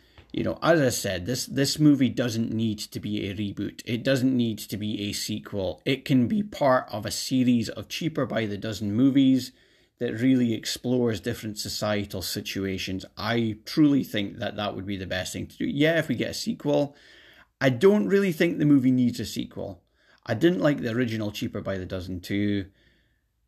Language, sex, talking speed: English, male, 195 wpm